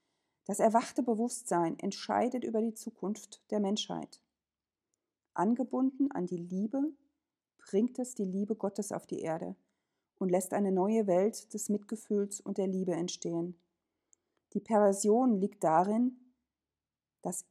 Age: 40-59